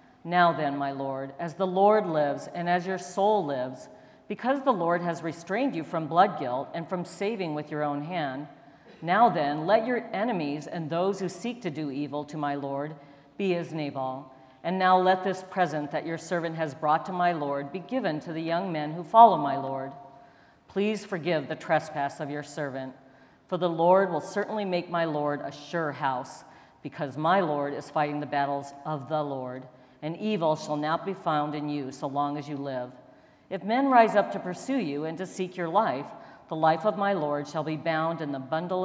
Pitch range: 145-185 Hz